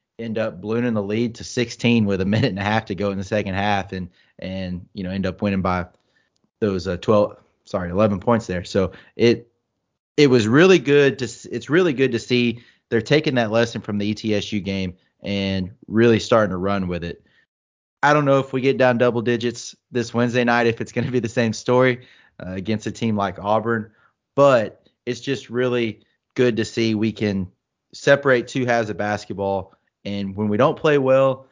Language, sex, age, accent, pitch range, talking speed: English, male, 30-49, American, 100-120 Hz, 205 wpm